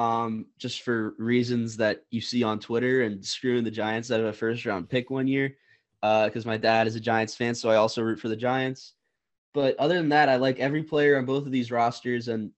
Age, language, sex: 20-39, English, male